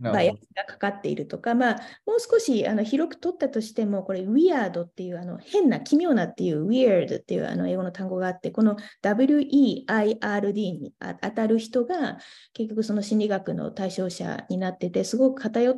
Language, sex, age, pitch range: Japanese, female, 20-39, 185-245 Hz